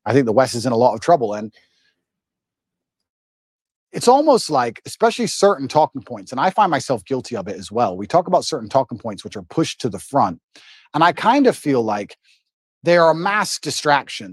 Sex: male